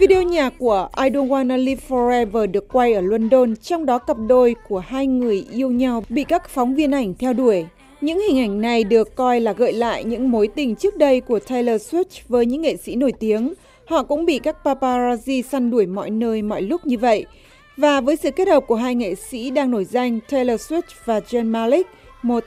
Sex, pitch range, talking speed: female, 225-285 Hz, 220 wpm